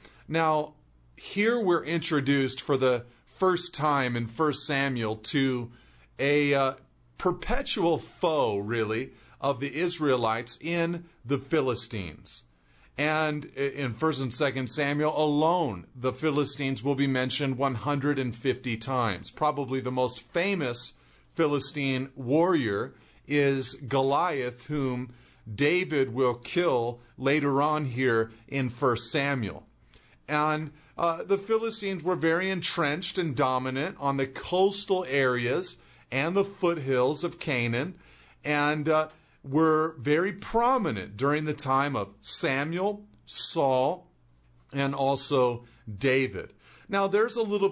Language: English